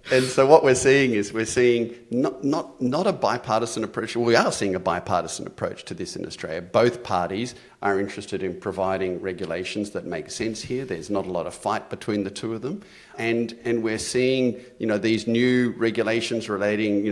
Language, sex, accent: English, male, Australian